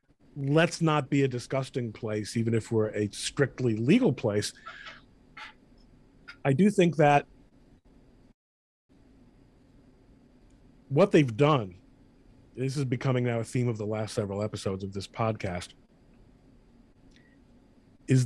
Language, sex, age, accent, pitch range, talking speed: English, male, 40-59, American, 125-150 Hz, 115 wpm